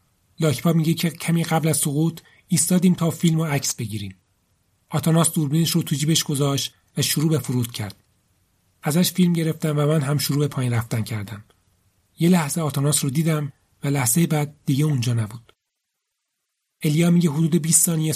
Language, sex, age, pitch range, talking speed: Persian, male, 40-59, 115-155 Hz, 165 wpm